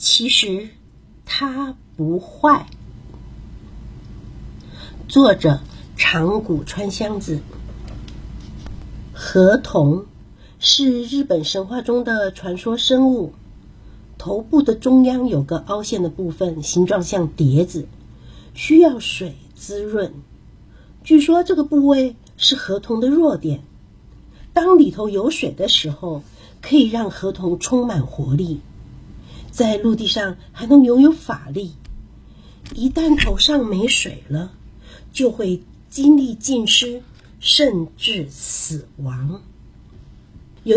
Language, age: Chinese, 50-69